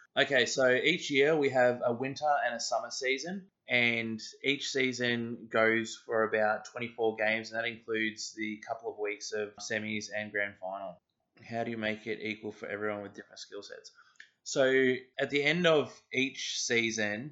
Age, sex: 20-39, male